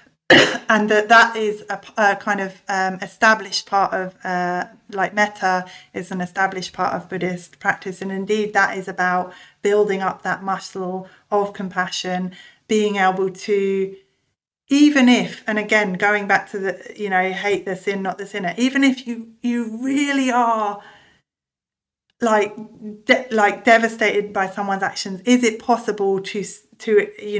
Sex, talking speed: female, 155 wpm